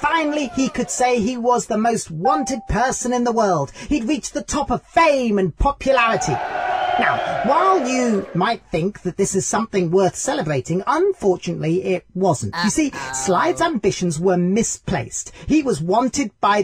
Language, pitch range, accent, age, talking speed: English, 160-235 Hz, British, 40-59, 160 wpm